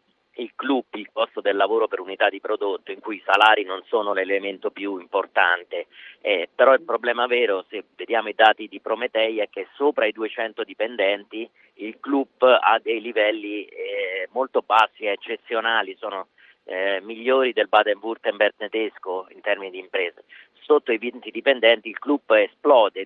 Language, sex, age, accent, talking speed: Italian, male, 40-59, native, 160 wpm